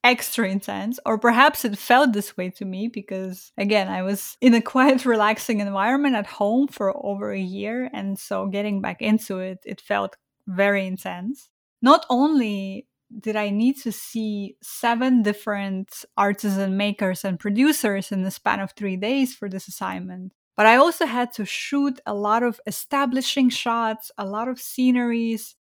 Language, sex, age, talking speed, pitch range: English, female, 20-39, 170 wpm, 200-245 Hz